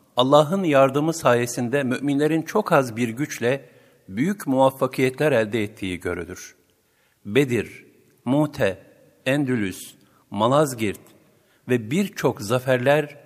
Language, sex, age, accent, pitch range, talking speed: Turkish, male, 60-79, native, 115-150 Hz, 90 wpm